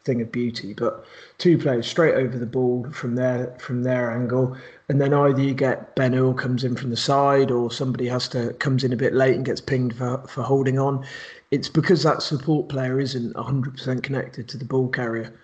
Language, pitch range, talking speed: English, 125-150 Hz, 220 wpm